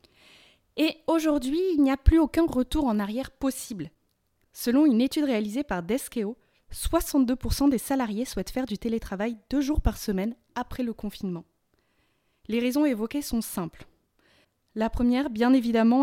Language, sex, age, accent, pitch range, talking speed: French, female, 20-39, French, 210-270 Hz, 150 wpm